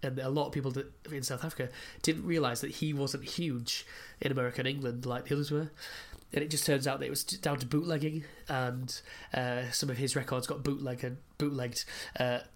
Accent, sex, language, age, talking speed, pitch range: British, male, English, 20-39, 205 wpm, 125-140 Hz